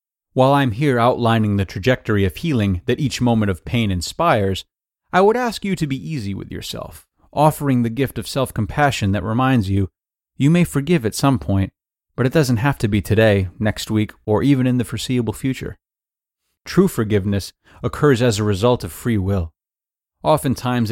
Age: 30-49